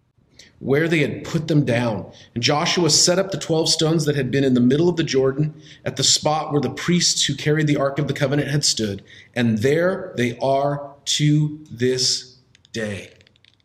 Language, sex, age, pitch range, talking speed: English, male, 40-59, 125-160 Hz, 195 wpm